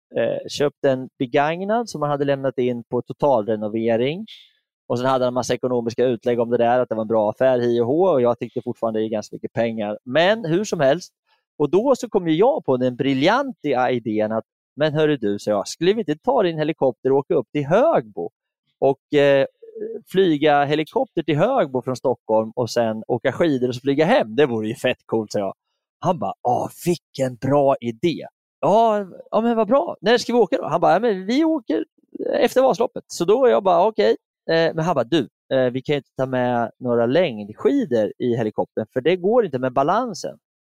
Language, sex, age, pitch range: Swedish, male, 30-49, 120-175 Hz